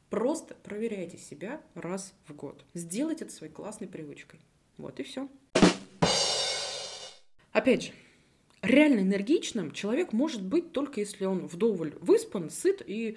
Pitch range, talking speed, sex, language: 180-260 Hz, 130 wpm, female, Russian